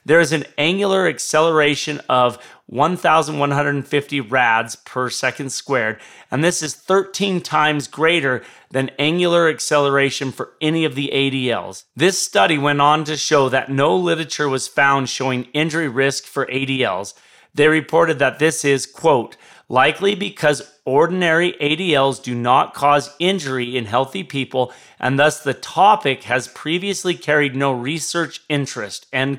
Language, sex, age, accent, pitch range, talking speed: English, male, 30-49, American, 130-160 Hz, 140 wpm